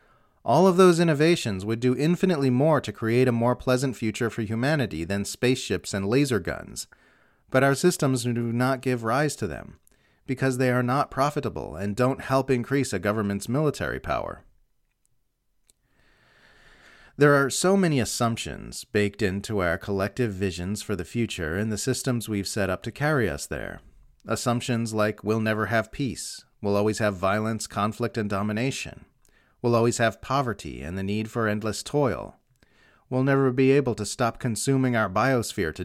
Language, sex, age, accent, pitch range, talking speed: English, male, 40-59, American, 105-135 Hz, 165 wpm